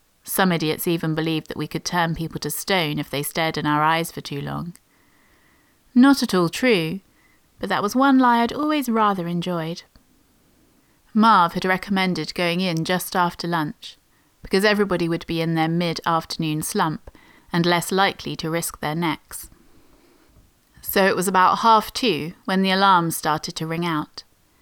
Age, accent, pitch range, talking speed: 30-49, British, 165-195 Hz, 170 wpm